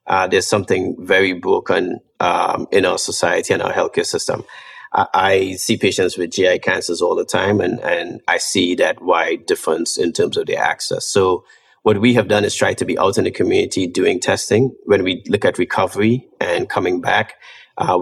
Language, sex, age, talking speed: English, male, 30-49, 195 wpm